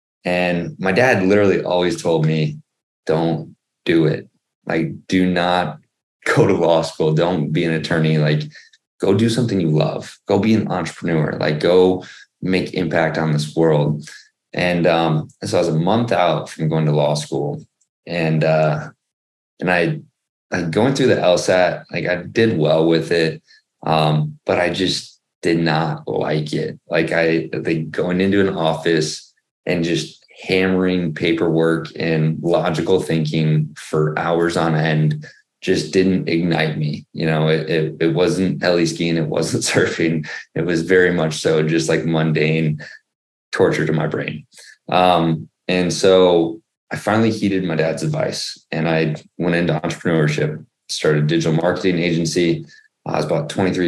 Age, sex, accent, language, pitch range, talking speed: 20-39, male, American, English, 80-90 Hz, 160 wpm